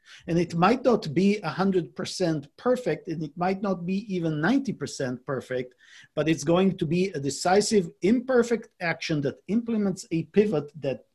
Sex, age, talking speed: male, 50-69, 155 wpm